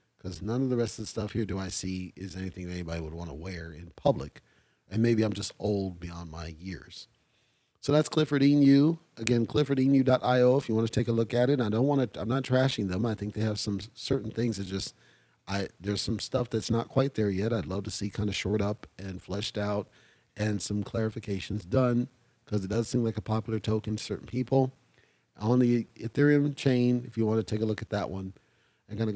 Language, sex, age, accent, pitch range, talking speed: English, male, 40-59, American, 100-125 Hz, 235 wpm